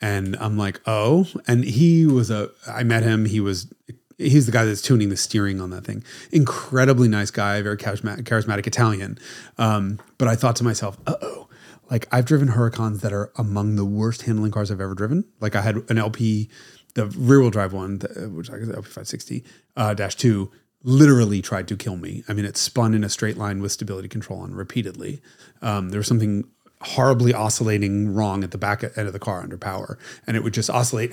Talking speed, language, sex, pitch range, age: 205 wpm, English, male, 100-120 Hz, 30-49